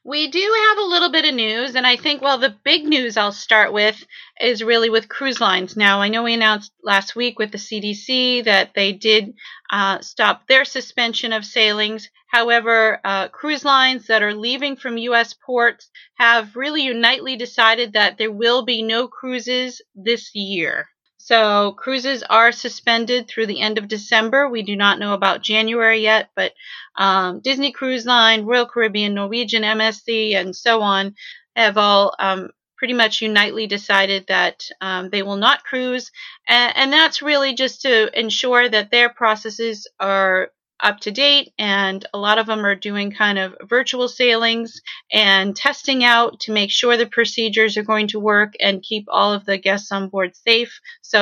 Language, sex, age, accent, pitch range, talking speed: English, female, 30-49, American, 205-245 Hz, 175 wpm